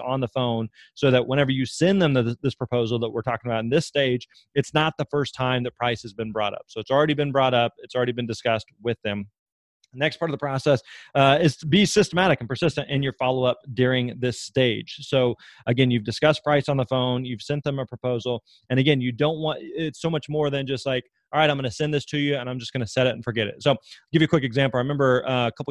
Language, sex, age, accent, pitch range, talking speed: English, male, 30-49, American, 115-140 Hz, 265 wpm